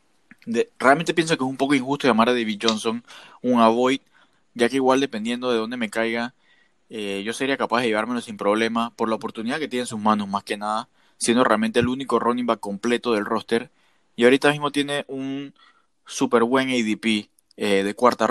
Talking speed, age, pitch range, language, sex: 195 wpm, 20-39, 110-130 Hz, Spanish, male